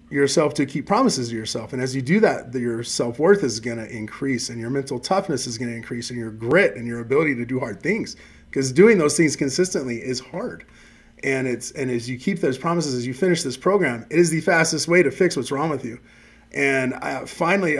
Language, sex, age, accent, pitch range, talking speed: English, male, 30-49, American, 125-155 Hz, 230 wpm